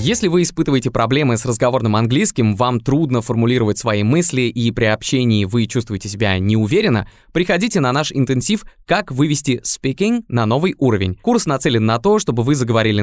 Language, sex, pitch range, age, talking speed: Russian, male, 115-155 Hz, 20-39, 165 wpm